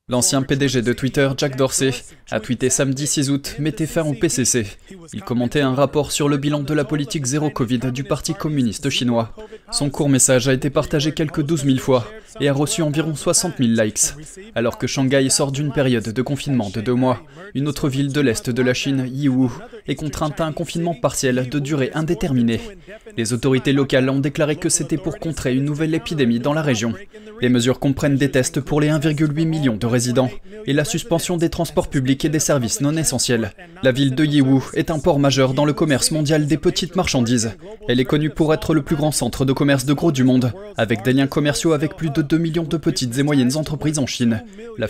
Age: 20-39